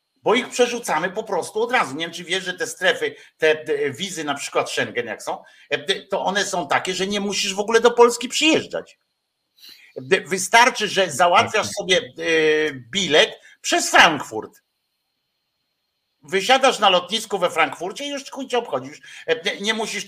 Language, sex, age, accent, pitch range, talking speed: Polish, male, 50-69, native, 165-235 Hz, 155 wpm